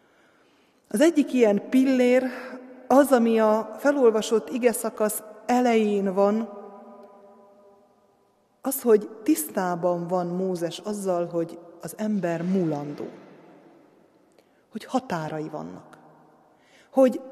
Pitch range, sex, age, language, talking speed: 190-245 Hz, female, 30-49, Hungarian, 90 wpm